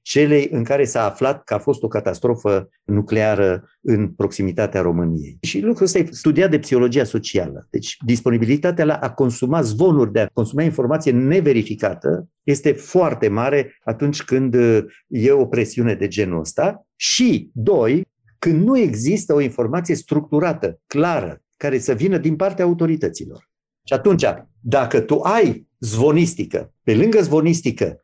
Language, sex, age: Romanian, male, 50-69